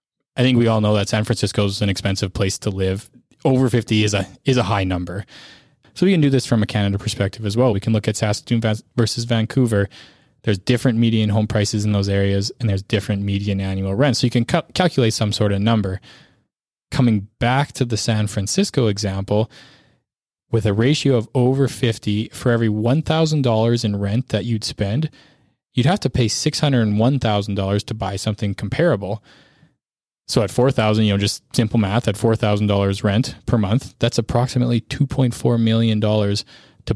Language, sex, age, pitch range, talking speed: English, male, 20-39, 105-125 Hz, 180 wpm